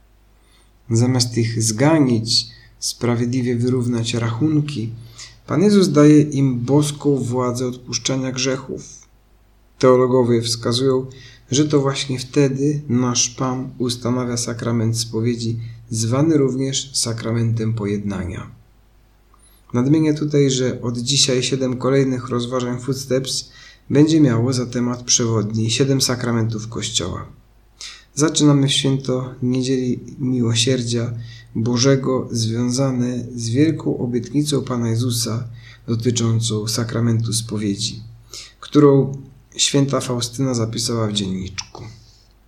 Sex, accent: male, native